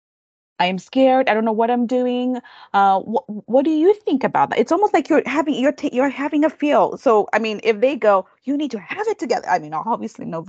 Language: English